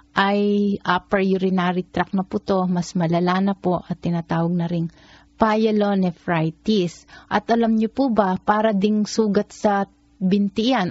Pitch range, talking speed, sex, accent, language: 180-205 Hz, 145 wpm, female, native, Filipino